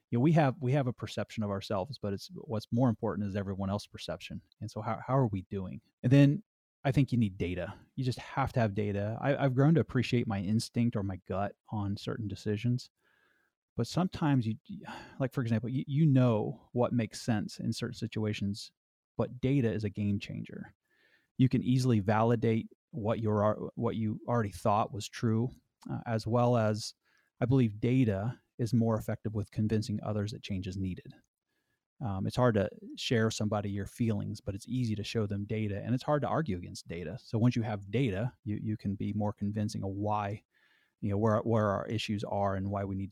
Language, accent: English, American